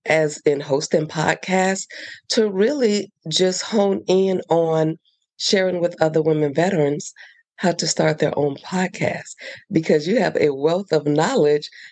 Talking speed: 140 wpm